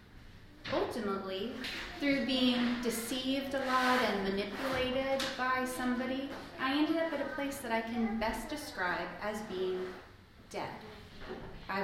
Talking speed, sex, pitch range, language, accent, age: 125 wpm, female, 195-260 Hz, English, American, 30-49